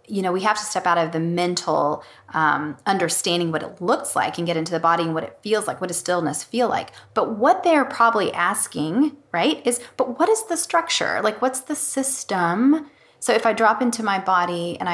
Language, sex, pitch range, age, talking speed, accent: English, female, 170-215 Hz, 30-49, 220 wpm, American